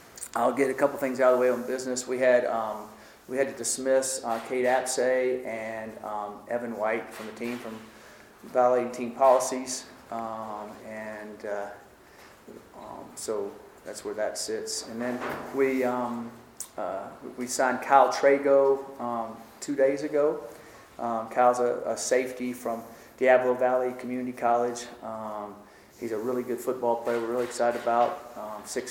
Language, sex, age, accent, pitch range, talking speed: English, male, 40-59, American, 115-130 Hz, 160 wpm